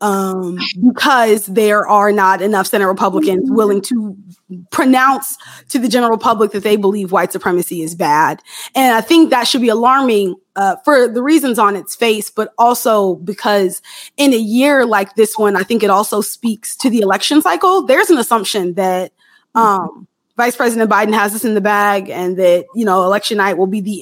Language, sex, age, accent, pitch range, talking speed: English, female, 20-39, American, 195-235 Hz, 190 wpm